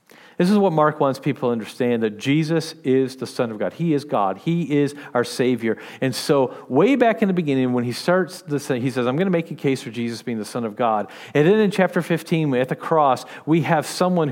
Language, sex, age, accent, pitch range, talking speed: English, male, 40-59, American, 135-185 Hz, 250 wpm